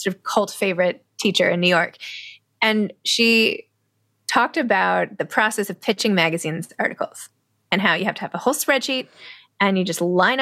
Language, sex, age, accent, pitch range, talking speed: English, female, 20-39, American, 190-245 Hz, 180 wpm